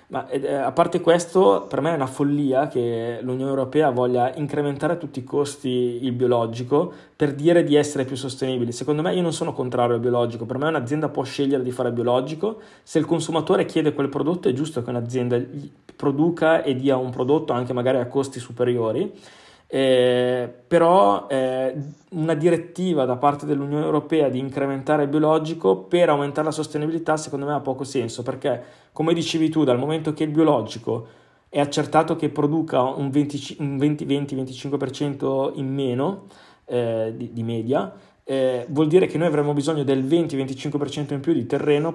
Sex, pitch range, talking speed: male, 125-155 Hz, 170 wpm